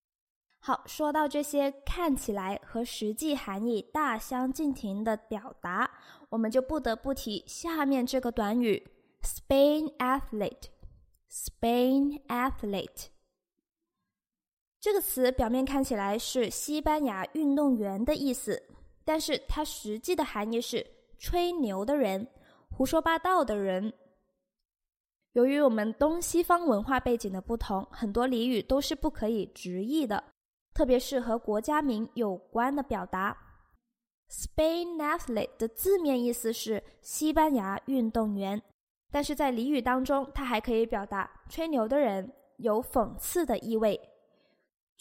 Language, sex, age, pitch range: Chinese, female, 20-39, 220-290 Hz